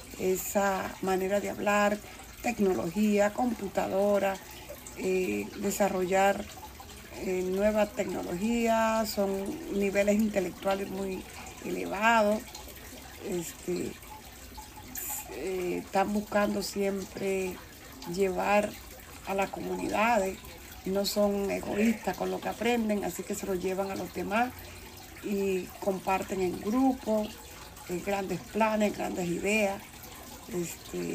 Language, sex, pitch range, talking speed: Spanish, female, 185-205 Hz, 100 wpm